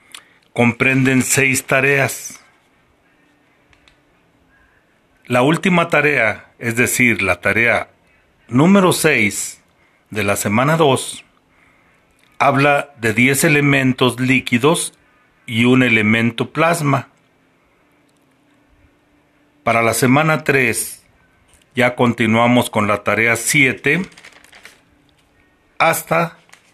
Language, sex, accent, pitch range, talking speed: Spanish, male, Mexican, 110-140 Hz, 80 wpm